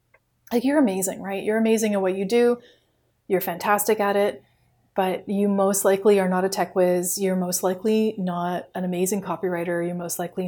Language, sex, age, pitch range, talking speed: English, female, 30-49, 180-215 Hz, 190 wpm